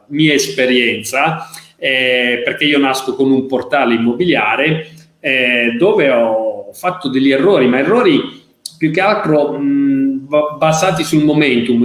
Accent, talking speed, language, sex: native, 120 wpm, Italian, male